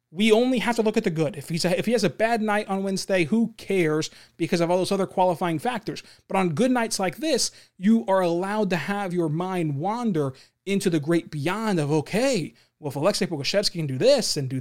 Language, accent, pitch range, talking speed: English, American, 165-220 Hz, 235 wpm